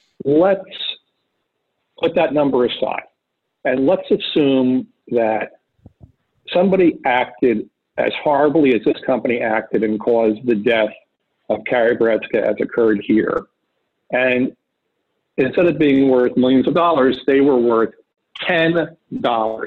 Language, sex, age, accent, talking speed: English, male, 50-69, American, 120 wpm